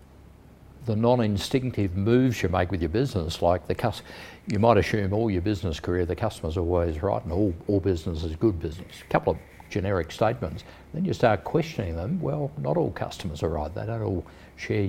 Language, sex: English, male